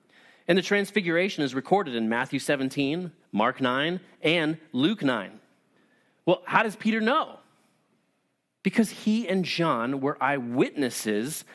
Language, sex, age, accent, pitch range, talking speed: English, male, 30-49, American, 140-200 Hz, 125 wpm